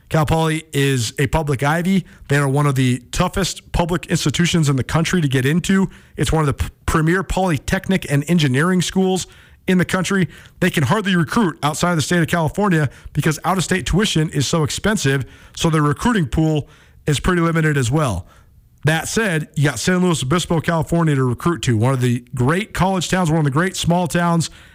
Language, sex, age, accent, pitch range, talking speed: English, male, 40-59, American, 140-180 Hz, 195 wpm